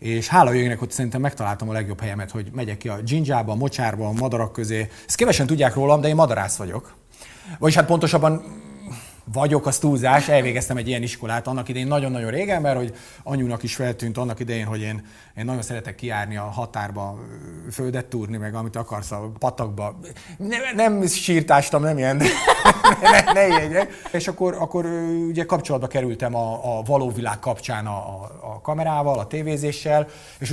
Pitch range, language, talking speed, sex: 115-145 Hz, Hungarian, 175 wpm, male